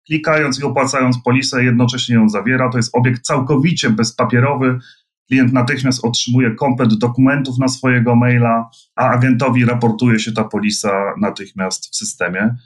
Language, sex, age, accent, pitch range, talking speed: Polish, male, 30-49, native, 115-140 Hz, 135 wpm